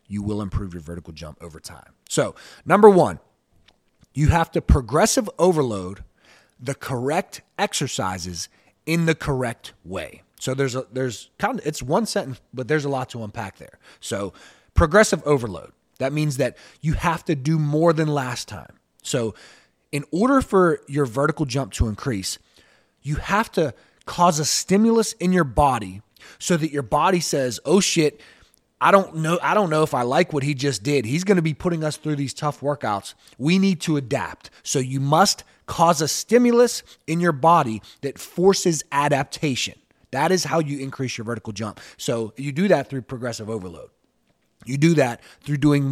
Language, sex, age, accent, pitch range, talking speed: English, male, 30-49, American, 120-170 Hz, 180 wpm